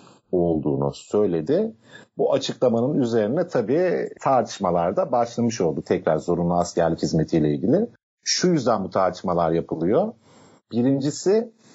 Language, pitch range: Turkish, 90-120 Hz